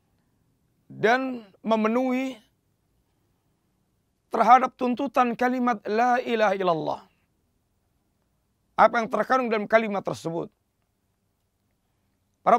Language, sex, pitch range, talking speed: Indonesian, male, 180-230 Hz, 70 wpm